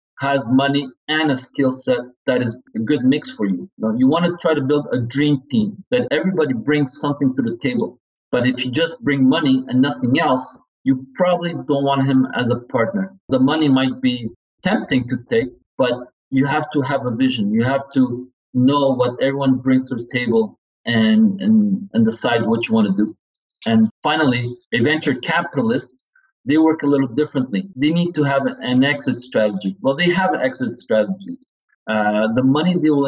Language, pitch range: English, 125-150 Hz